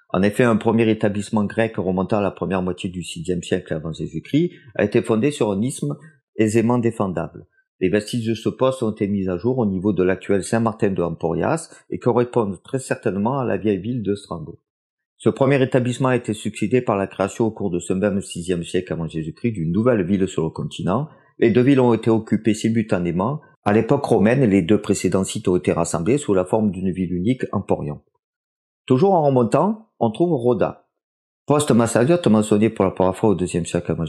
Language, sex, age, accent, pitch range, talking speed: French, male, 40-59, French, 95-135 Hz, 200 wpm